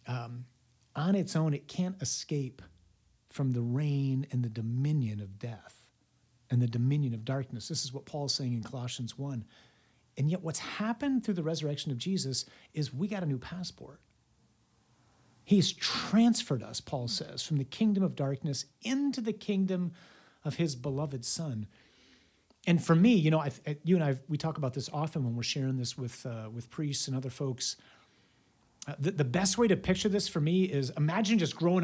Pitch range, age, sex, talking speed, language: 125-160 Hz, 50-69, male, 185 wpm, English